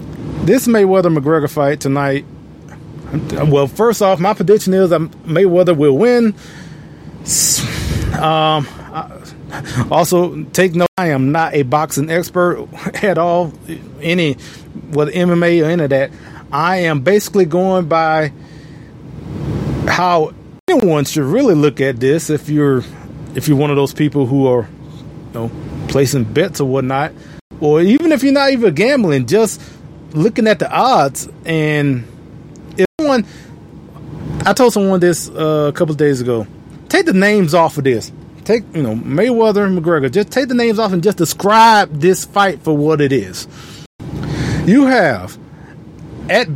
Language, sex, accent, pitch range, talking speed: English, male, American, 145-185 Hz, 145 wpm